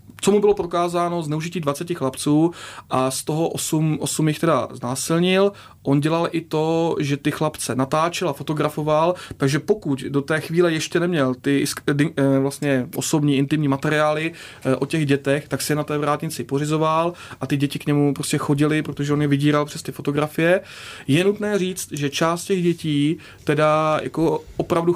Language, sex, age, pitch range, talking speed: Czech, male, 30-49, 140-160 Hz, 170 wpm